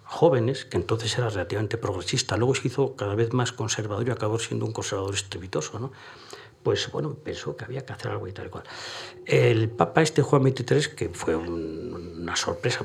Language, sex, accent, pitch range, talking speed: Spanish, male, Spanish, 105-125 Hz, 195 wpm